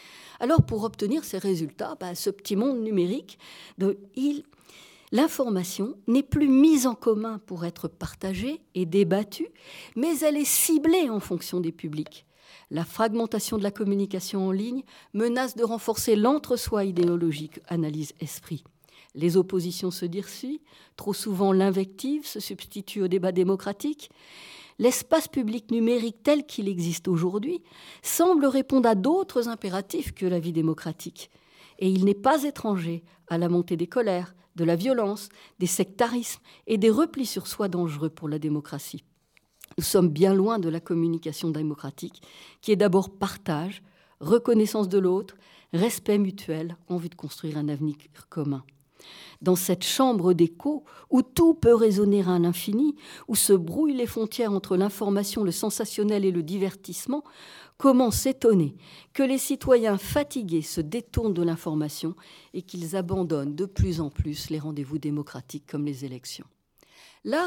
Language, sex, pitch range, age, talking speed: French, female, 170-235 Hz, 50-69, 150 wpm